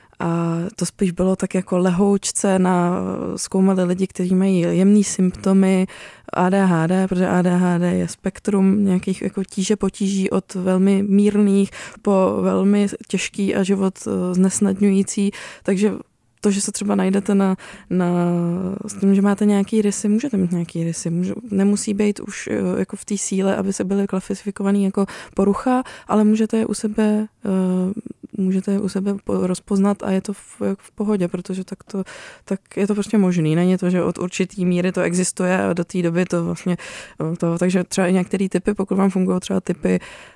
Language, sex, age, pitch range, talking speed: Czech, female, 20-39, 180-200 Hz, 170 wpm